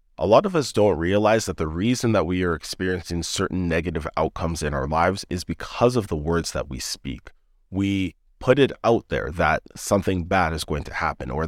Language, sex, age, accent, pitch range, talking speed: English, male, 30-49, American, 80-100 Hz, 210 wpm